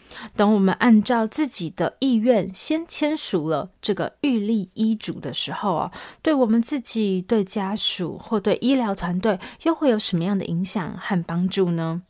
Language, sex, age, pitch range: Chinese, female, 30-49, 175-225 Hz